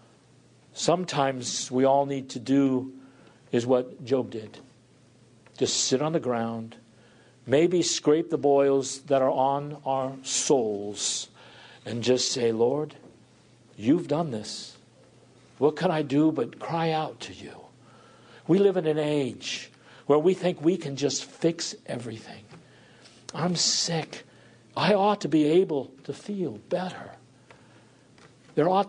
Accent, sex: American, male